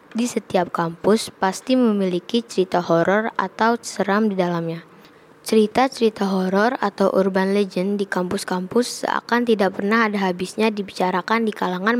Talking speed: 130 wpm